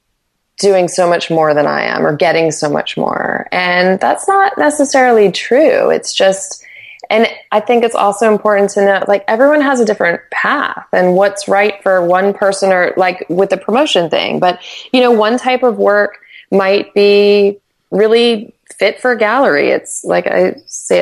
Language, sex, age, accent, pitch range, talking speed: English, female, 20-39, American, 165-215 Hz, 180 wpm